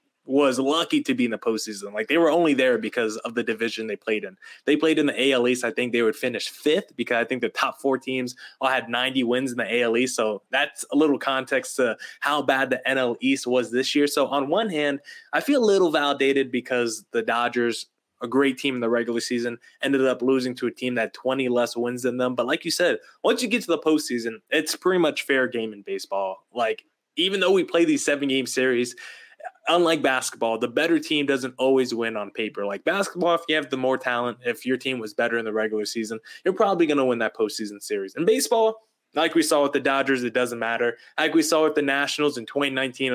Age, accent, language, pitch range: 20-39, American, English, 120-160 Hz